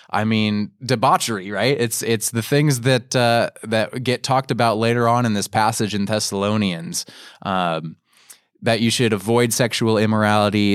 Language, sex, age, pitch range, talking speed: English, male, 20-39, 100-115 Hz, 155 wpm